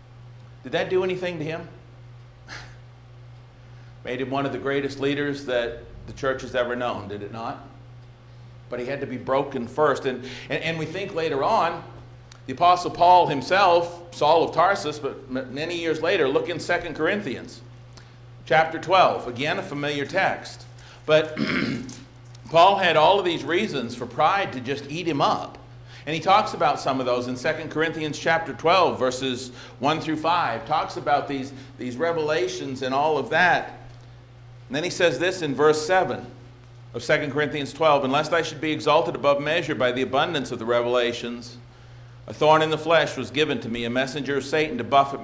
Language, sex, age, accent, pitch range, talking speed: English, male, 50-69, American, 120-150 Hz, 180 wpm